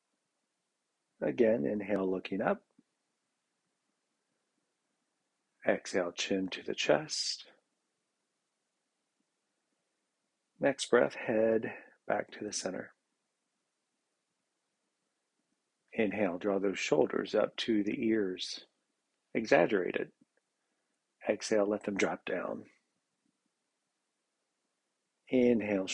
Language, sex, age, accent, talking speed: English, male, 50-69, American, 75 wpm